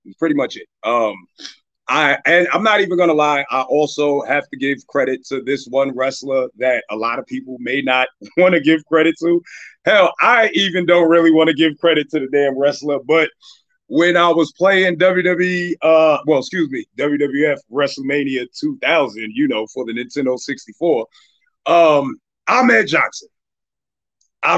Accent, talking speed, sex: American, 170 wpm, male